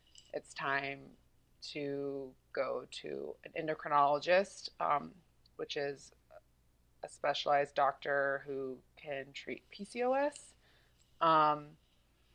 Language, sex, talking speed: English, female, 85 wpm